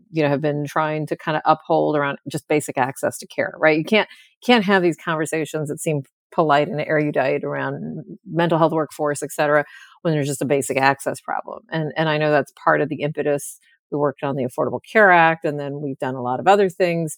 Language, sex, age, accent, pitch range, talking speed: English, female, 40-59, American, 150-180 Hz, 225 wpm